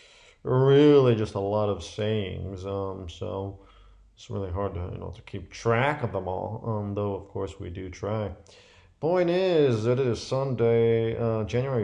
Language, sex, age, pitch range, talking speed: English, male, 40-59, 95-125 Hz, 175 wpm